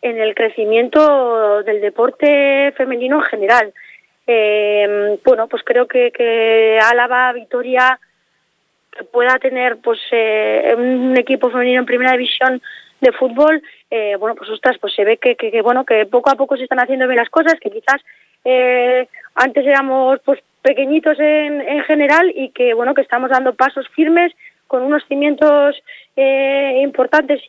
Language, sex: Spanish, female